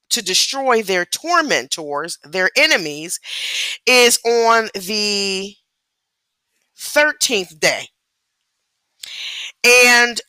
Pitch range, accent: 185-245 Hz, American